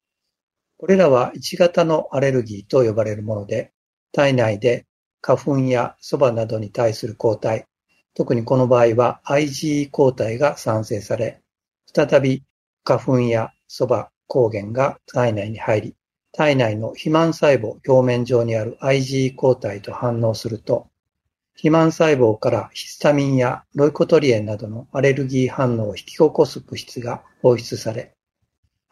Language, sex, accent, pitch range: Japanese, male, native, 115-145 Hz